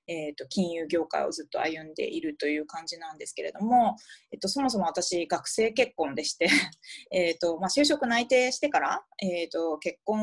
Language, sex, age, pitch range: Japanese, female, 20-39, 170-235 Hz